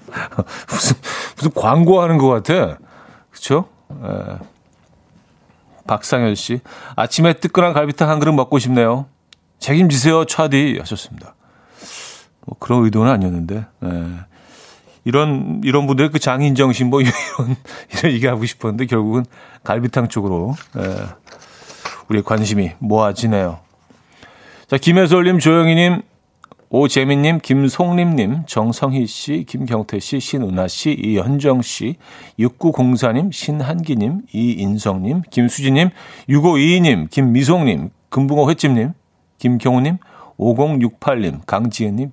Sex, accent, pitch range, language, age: male, native, 105-145 Hz, Korean, 40-59